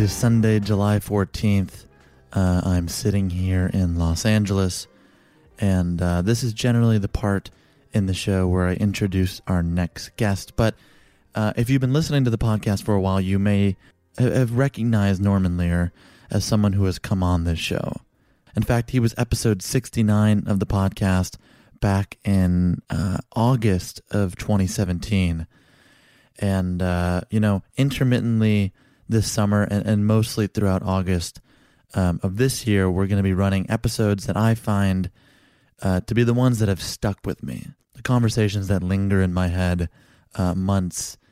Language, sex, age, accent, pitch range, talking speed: English, male, 30-49, American, 90-110 Hz, 165 wpm